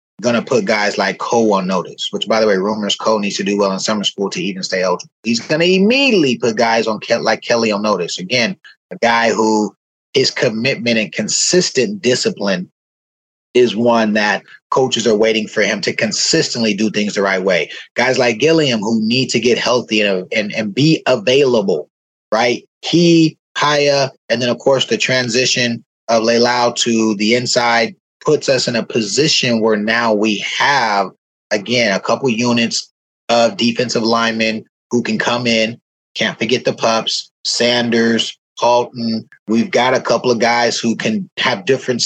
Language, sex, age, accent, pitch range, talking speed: English, male, 30-49, American, 110-125 Hz, 175 wpm